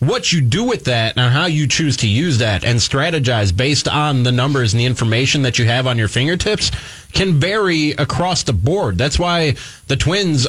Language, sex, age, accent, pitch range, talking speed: English, male, 30-49, American, 130-170 Hz, 205 wpm